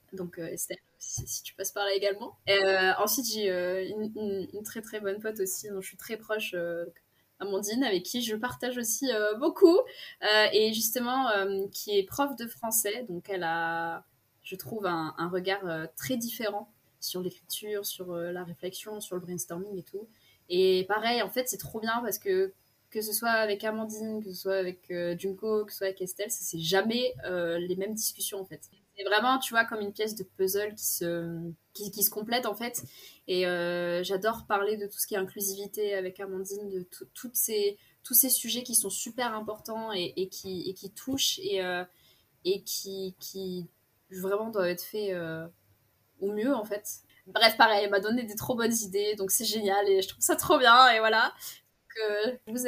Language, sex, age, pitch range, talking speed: French, female, 20-39, 185-225 Hz, 205 wpm